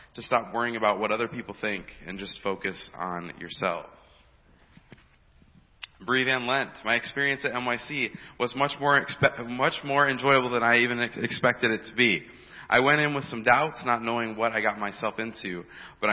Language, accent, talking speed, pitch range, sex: English, American, 175 wpm, 100-120 Hz, male